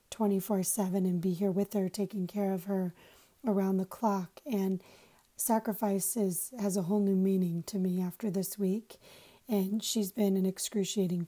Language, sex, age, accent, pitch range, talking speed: English, female, 30-49, American, 190-215 Hz, 165 wpm